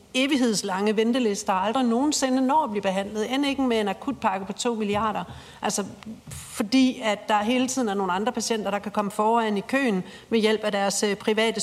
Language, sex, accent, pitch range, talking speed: Danish, female, native, 205-235 Hz, 195 wpm